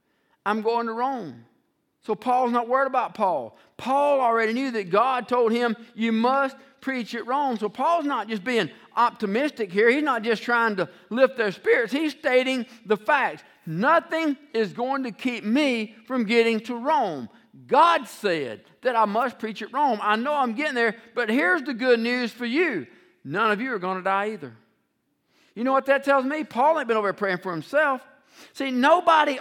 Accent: American